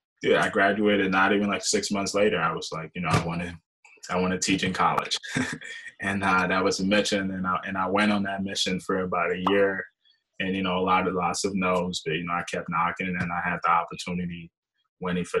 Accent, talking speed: American, 240 wpm